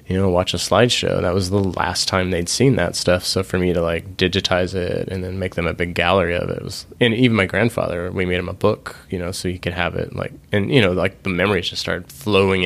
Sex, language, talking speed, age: male, English, 270 wpm, 20-39